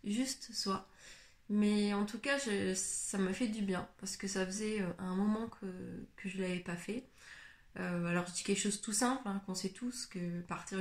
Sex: female